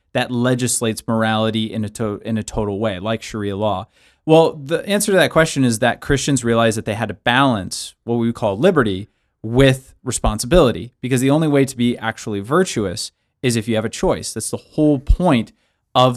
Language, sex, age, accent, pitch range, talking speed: English, male, 30-49, American, 110-130 Hz, 200 wpm